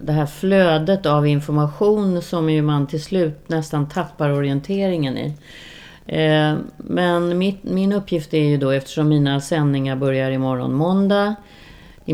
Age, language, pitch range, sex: 40-59, Swedish, 145-180 Hz, female